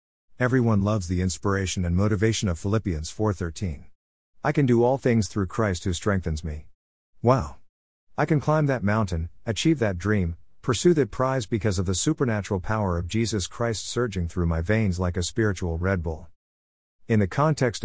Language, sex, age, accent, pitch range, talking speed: English, male, 50-69, American, 85-115 Hz, 175 wpm